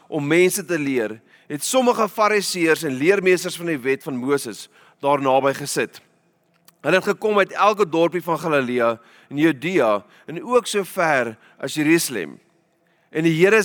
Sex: male